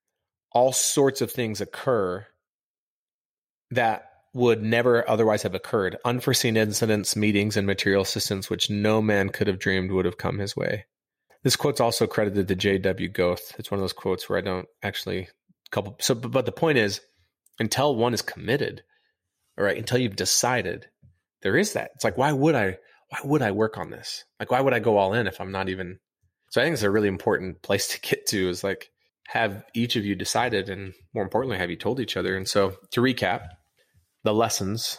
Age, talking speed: 30-49, 200 wpm